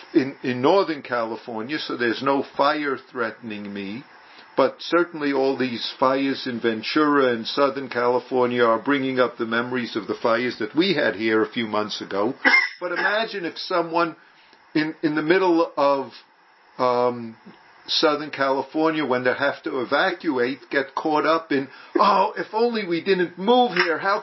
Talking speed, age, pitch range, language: 160 wpm, 50-69, 130-180 Hz, English